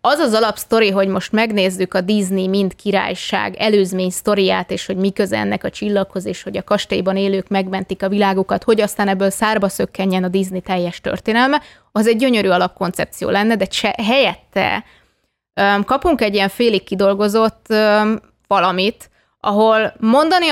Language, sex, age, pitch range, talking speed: Hungarian, female, 20-39, 195-215 Hz, 145 wpm